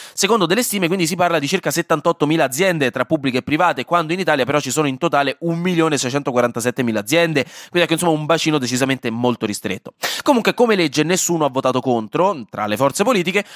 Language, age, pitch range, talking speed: Italian, 20-39, 130-175 Hz, 195 wpm